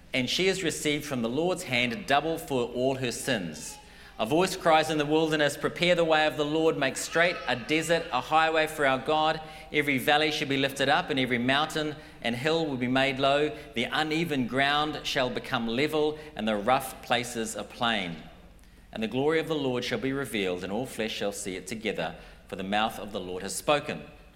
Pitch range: 105-150 Hz